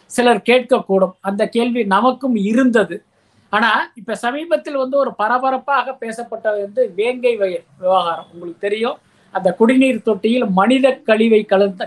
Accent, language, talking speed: native, Tamil, 125 wpm